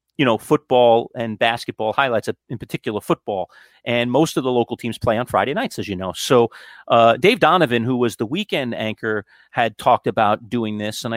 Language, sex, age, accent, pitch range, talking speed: English, male, 40-59, American, 115-140 Hz, 200 wpm